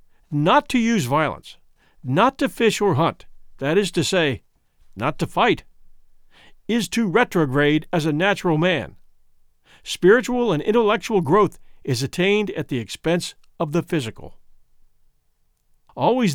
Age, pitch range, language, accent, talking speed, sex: 50-69, 140-210 Hz, English, American, 130 wpm, male